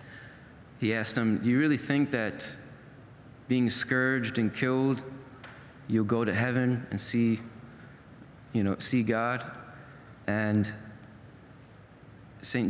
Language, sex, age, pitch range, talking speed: English, male, 30-49, 110-130 Hz, 115 wpm